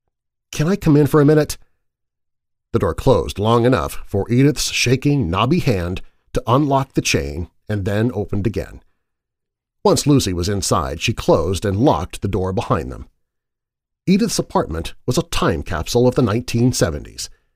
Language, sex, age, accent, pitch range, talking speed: English, male, 40-59, American, 95-130 Hz, 155 wpm